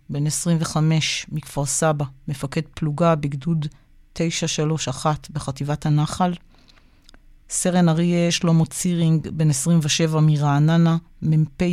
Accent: native